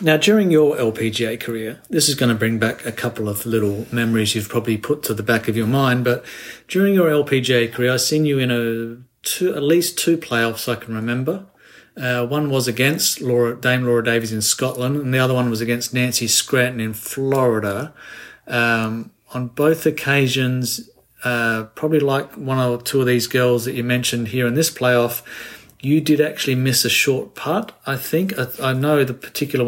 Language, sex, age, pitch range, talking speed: English, male, 40-59, 120-145 Hz, 195 wpm